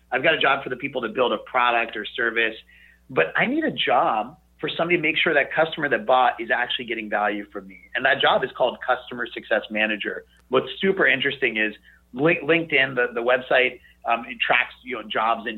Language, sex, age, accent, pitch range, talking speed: English, male, 30-49, American, 110-150 Hz, 210 wpm